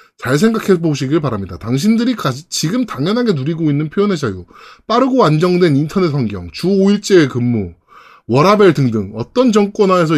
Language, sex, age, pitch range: Korean, male, 20-39, 145-215 Hz